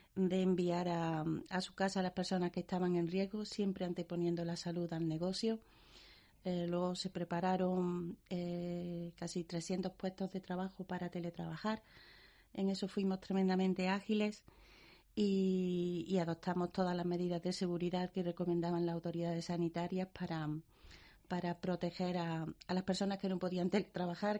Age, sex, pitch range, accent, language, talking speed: 30-49, female, 175-195 Hz, Spanish, Spanish, 150 wpm